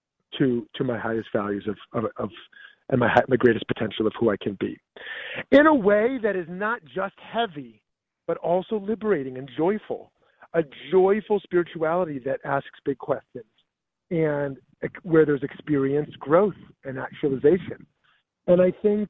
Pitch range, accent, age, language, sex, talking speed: 135-190 Hz, American, 40-59, English, male, 155 wpm